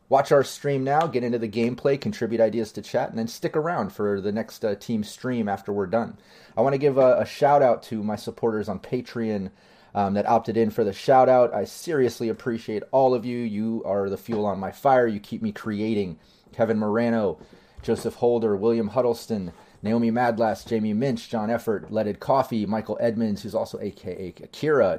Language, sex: English, male